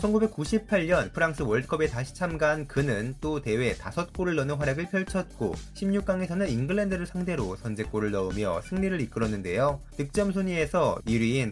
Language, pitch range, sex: Korean, 115-175 Hz, male